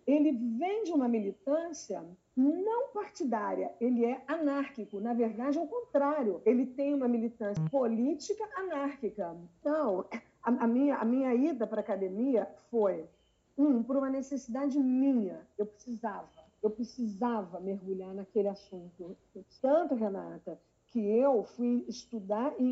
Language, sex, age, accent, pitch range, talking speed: Portuguese, female, 50-69, Brazilian, 225-290 Hz, 130 wpm